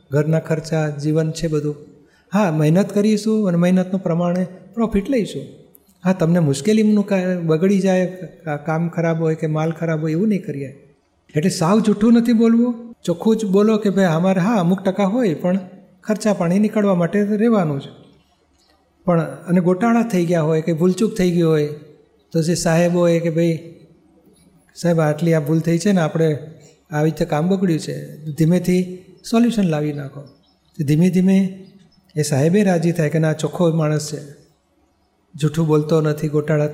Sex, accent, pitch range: male, native, 155-185 Hz